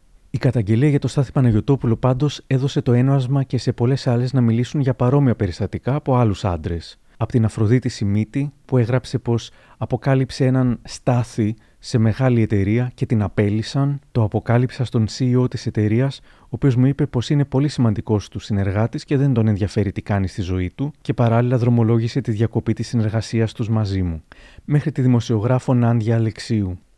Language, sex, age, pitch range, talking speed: Greek, male, 30-49, 105-130 Hz, 175 wpm